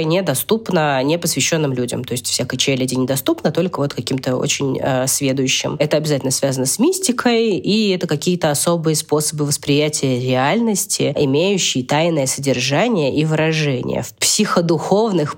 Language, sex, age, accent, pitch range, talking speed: Russian, female, 20-39, native, 145-180 Hz, 130 wpm